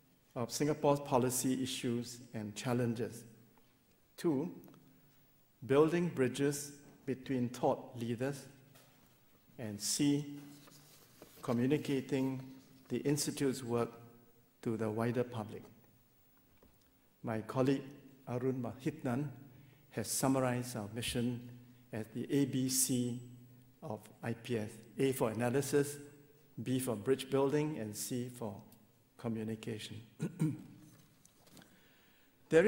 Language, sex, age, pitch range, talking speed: English, male, 60-79, 120-140 Hz, 85 wpm